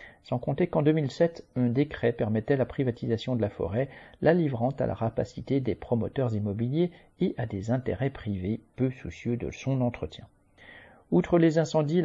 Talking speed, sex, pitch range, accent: 165 wpm, male, 115-145 Hz, French